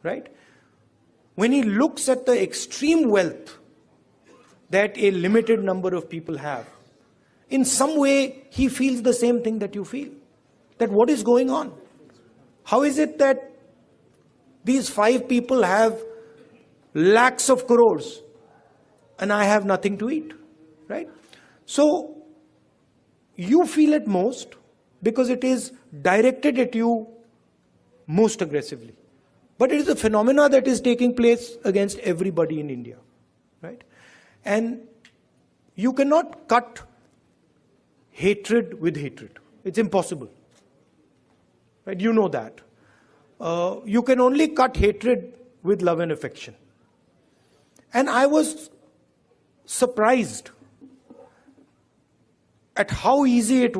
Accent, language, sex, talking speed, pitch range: native, Hindi, male, 120 wpm, 195-260 Hz